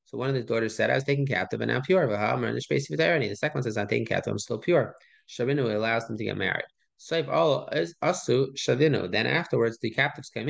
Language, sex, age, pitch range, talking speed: English, male, 20-39, 110-140 Hz, 195 wpm